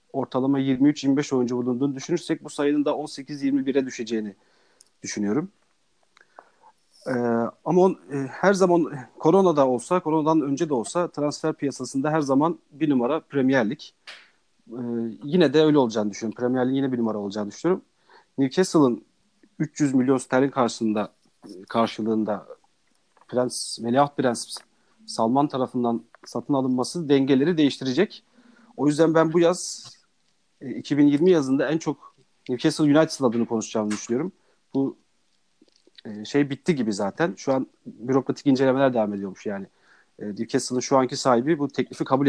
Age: 40-59